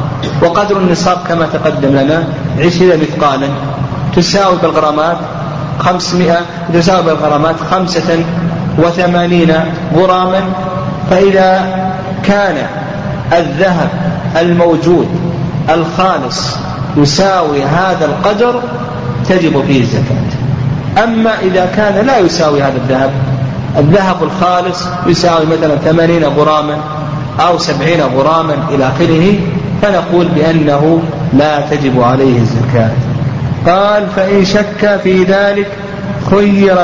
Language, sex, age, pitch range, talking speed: Arabic, male, 40-59, 145-185 Hz, 90 wpm